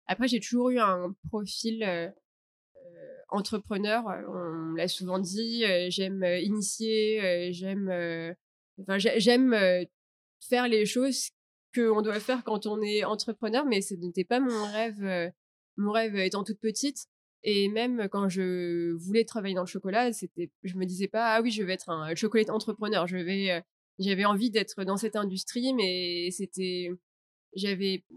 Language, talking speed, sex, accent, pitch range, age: French, 170 wpm, female, French, 180-220 Hz, 20-39